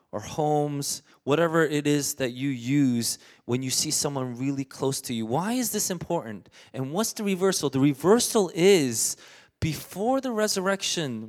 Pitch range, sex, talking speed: 135-205 Hz, male, 160 wpm